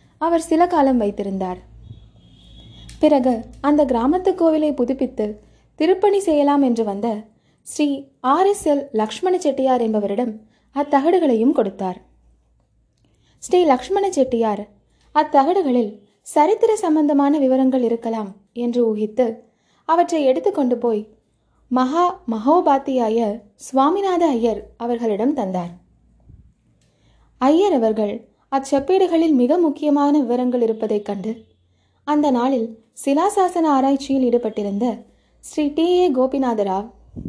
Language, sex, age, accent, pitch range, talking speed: Tamil, female, 20-39, native, 220-300 Hz, 90 wpm